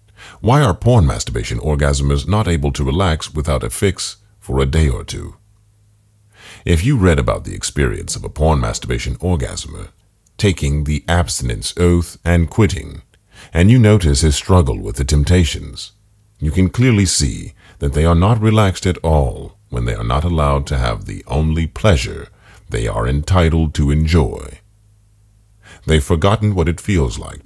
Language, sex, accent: English, male, American